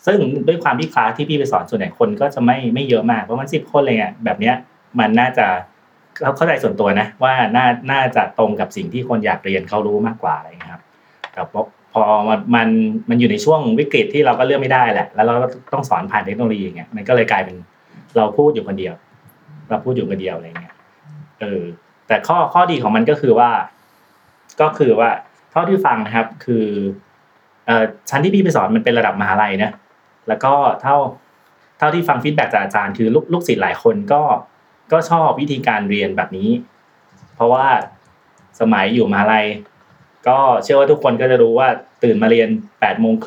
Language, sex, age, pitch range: Thai, male, 30-49, 105-160 Hz